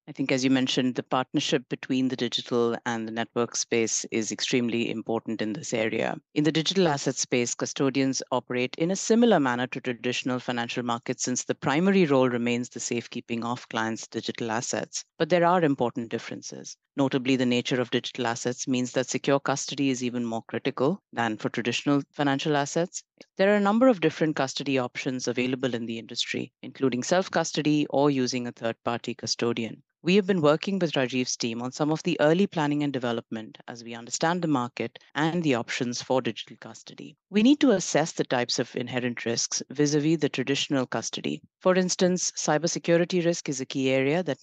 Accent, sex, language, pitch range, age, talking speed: Indian, female, English, 120-155 Hz, 50-69, 190 wpm